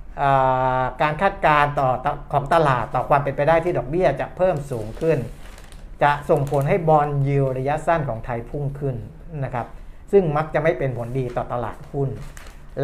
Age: 60-79